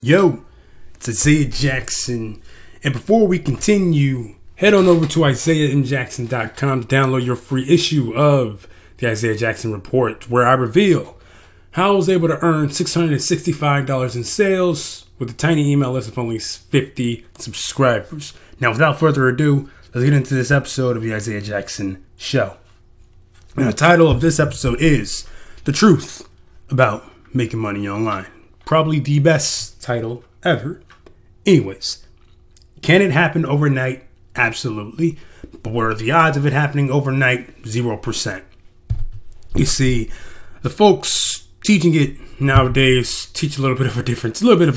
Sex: male